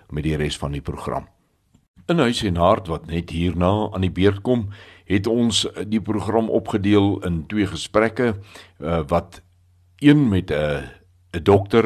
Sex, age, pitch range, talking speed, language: male, 60-79, 85-105 Hz, 150 wpm, Swedish